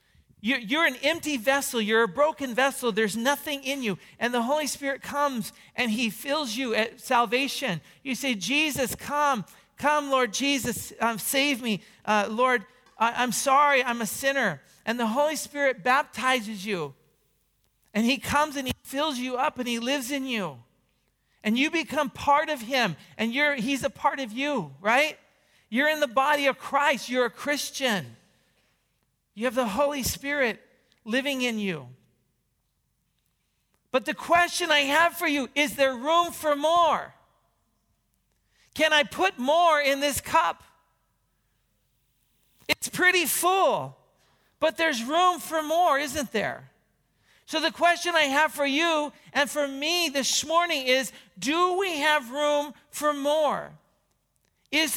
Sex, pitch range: male, 240-300 Hz